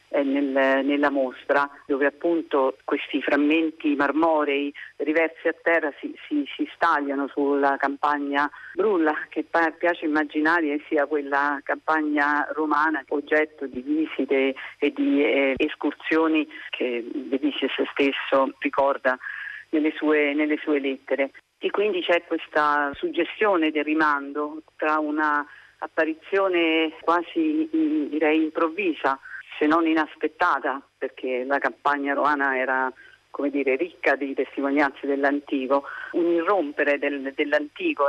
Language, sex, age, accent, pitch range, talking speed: Italian, female, 40-59, native, 140-165 Hz, 110 wpm